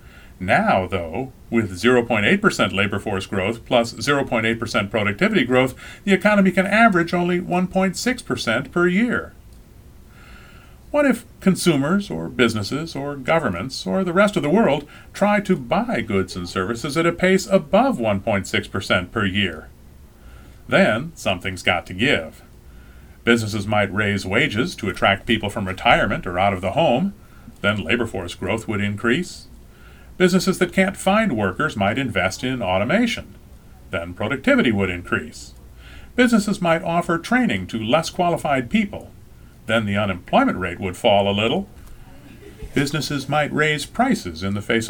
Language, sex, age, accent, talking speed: English, male, 40-59, American, 140 wpm